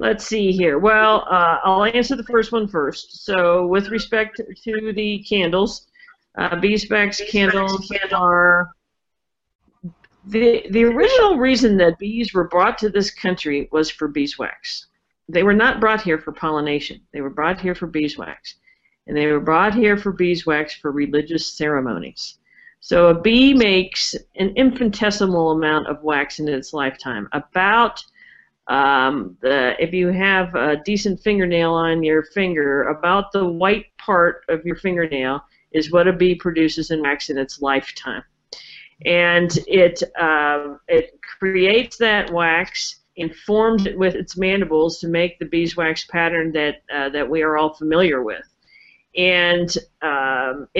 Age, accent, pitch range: 50-69, American, 160-205 Hz